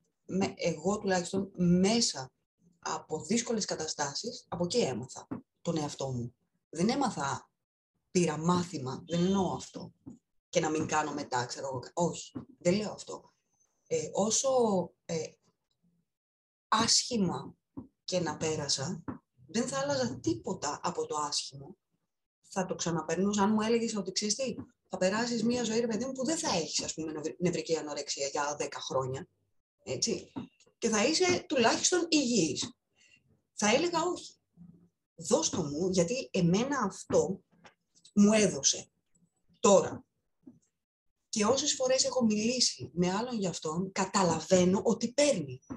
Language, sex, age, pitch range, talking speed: Greek, female, 20-39, 165-245 Hz, 130 wpm